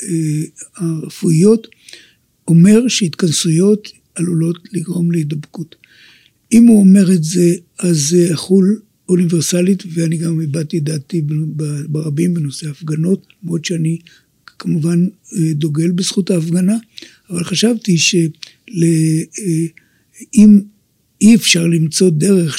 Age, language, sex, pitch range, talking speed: 60-79, Hebrew, male, 170-205 Hz, 95 wpm